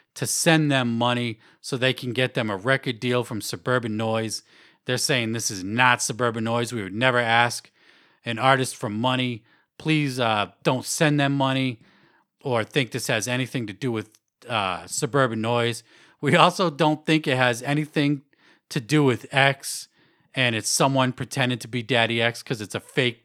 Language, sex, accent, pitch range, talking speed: English, male, American, 115-140 Hz, 180 wpm